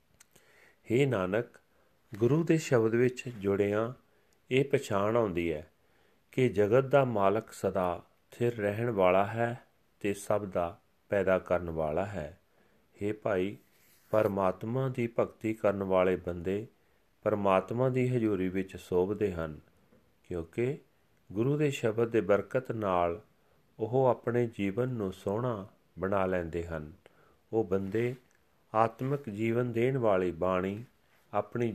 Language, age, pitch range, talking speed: Punjabi, 40-59, 95-120 Hz, 100 wpm